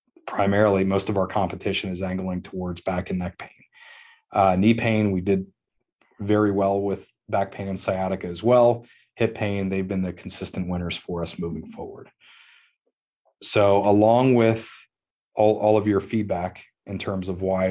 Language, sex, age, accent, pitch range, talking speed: English, male, 30-49, American, 90-105 Hz, 165 wpm